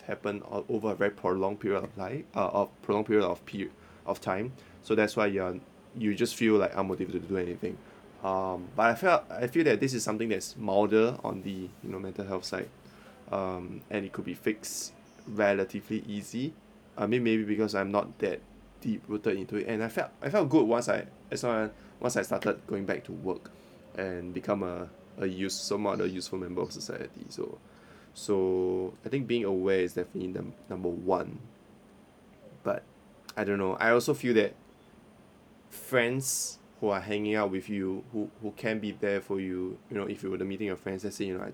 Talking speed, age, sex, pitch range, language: 205 wpm, 20-39, male, 95-110 Hz, English